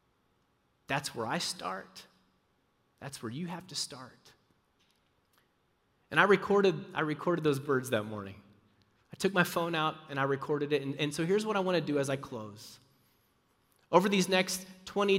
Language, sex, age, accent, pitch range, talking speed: English, male, 30-49, American, 140-195 Hz, 170 wpm